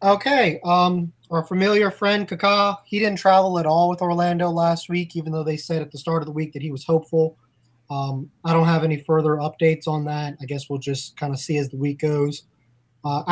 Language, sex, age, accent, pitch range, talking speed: English, male, 20-39, American, 150-190 Hz, 225 wpm